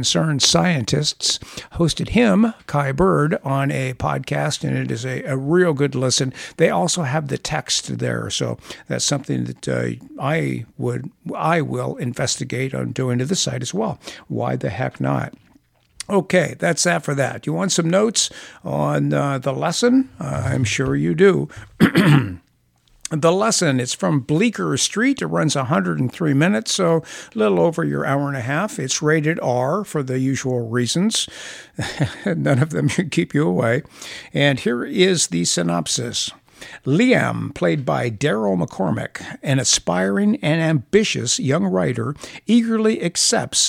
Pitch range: 130-185 Hz